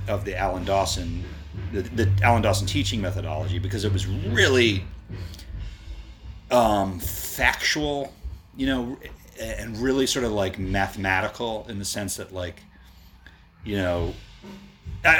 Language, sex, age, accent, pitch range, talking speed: English, male, 30-49, American, 90-110 Hz, 125 wpm